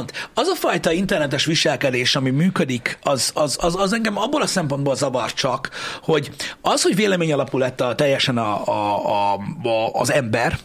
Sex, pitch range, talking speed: male, 130-180 Hz, 170 wpm